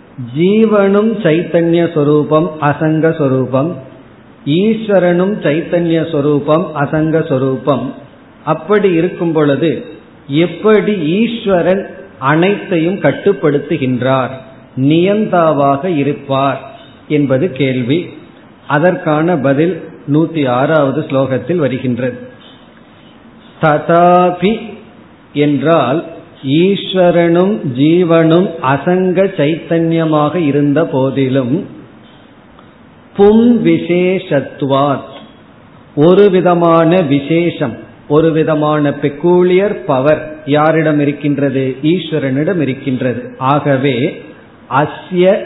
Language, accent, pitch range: Tamil, native, 140-175 Hz